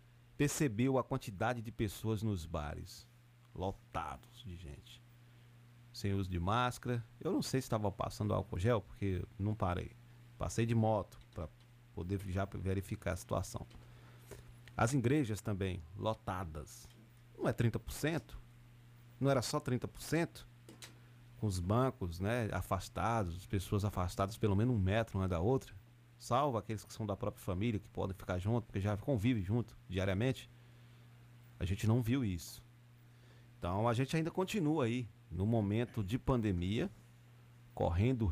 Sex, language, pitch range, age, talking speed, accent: male, Portuguese, 100-120 Hz, 40-59, 145 wpm, Brazilian